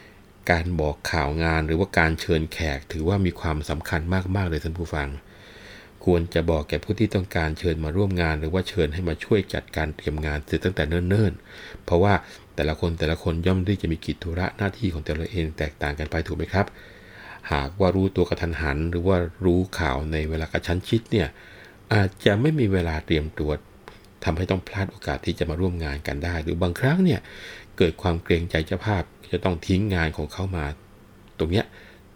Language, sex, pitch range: Thai, male, 80-100 Hz